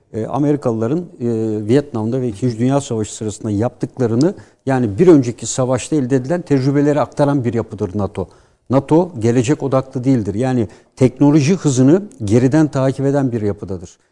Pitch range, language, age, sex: 115-140 Hz, Turkish, 60-79, male